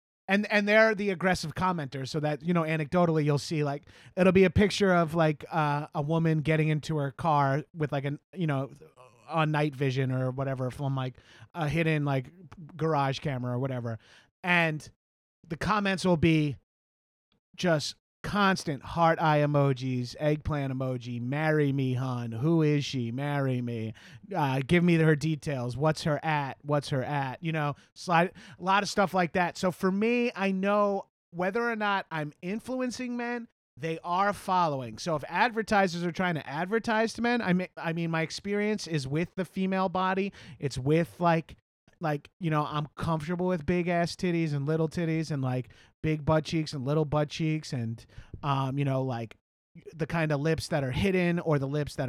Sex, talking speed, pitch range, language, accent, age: male, 185 wpm, 135-175 Hz, English, American, 30-49